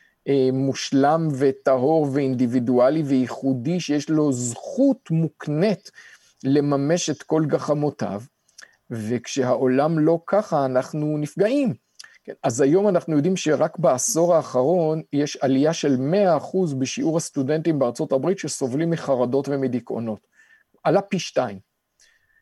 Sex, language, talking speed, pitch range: male, Hebrew, 105 wpm, 130-170 Hz